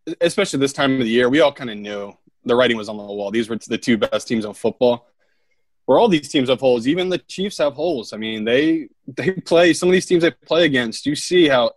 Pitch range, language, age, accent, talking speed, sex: 110-160 Hz, English, 20-39, American, 260 wpm, male